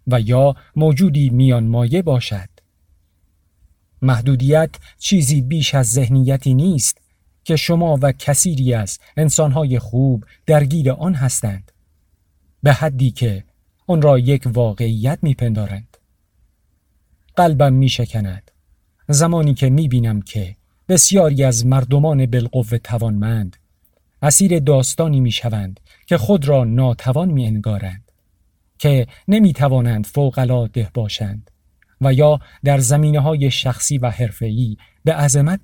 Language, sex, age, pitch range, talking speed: Persian, male, 50-69, 95-140 Hz, 110 wpm